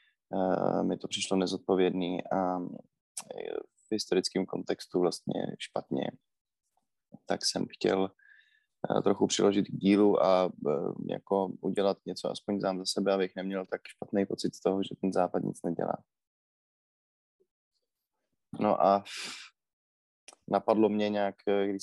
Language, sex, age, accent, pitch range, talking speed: Czech, male, 20-39, native, 90-100 Hz, 120 wpm